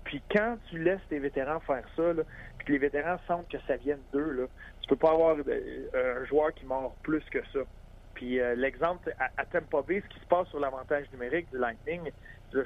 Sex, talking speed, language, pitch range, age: male, 230 wpm, French, 130-175 Hz, 40-59